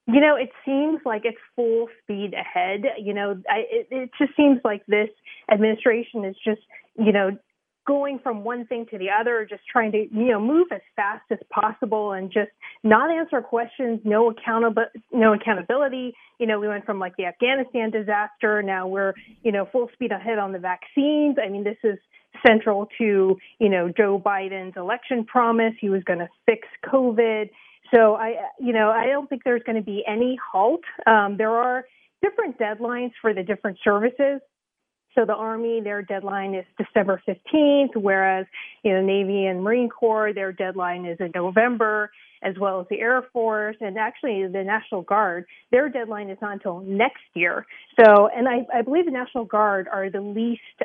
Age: 30-49